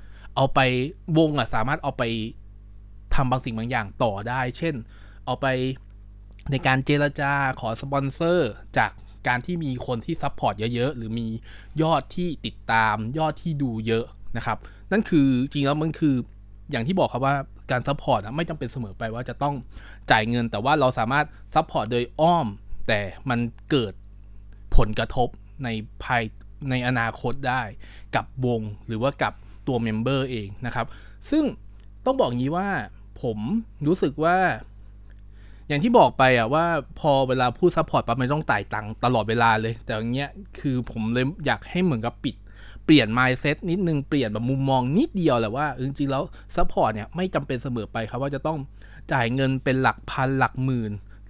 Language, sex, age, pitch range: Thai, male, 20-39, 110-140 Hz